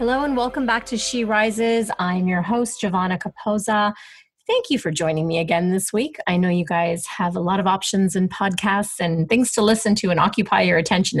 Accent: American